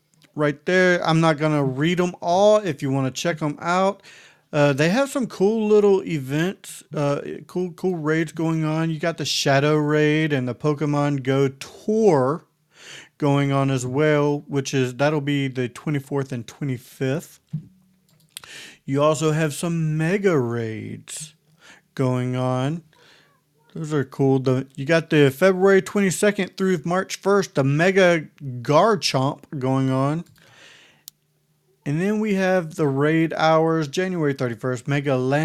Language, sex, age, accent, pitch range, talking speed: English, male, 40-59, American, 135-175 Hz, 140 wpm